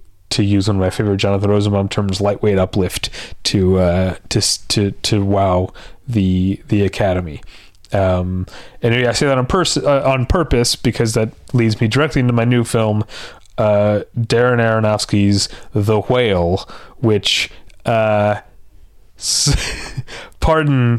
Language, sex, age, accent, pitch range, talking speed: English, male, 30-49, American, 100-120 Hz, 140 wpm